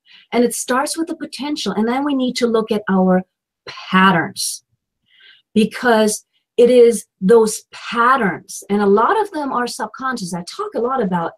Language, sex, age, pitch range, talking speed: English, female, 40-59, 190-260 Hz, 170 wpm